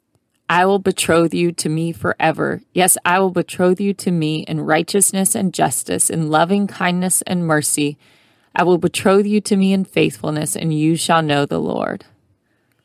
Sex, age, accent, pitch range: female, 30-49, American, 155-190 Hz